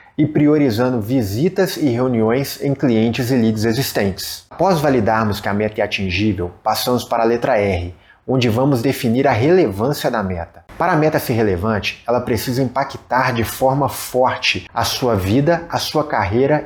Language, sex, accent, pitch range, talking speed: Portuguese, male, Brazilian, 110-140 Hz, 165 wpm